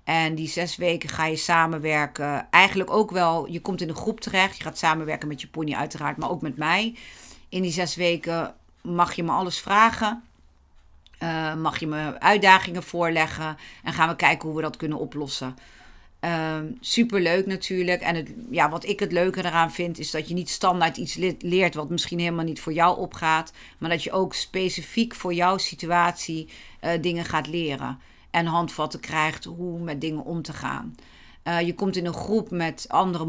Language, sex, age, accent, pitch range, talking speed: Dutch, female, 50-69, Dutch, 160-180 Hz, 185 wpm